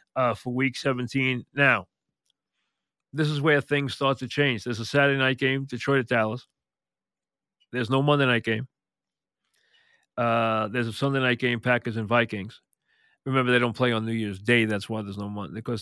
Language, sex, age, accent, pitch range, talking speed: English, male, 40-59, American, 115-135 Hz, 175 wpm